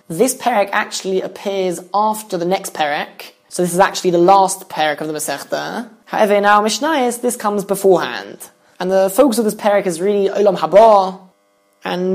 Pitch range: 175-200 Hz